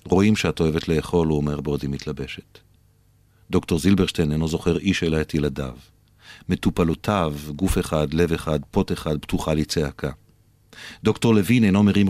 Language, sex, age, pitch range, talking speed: Hebrew, male, 50-69, 80-95 Hz, 145 wpm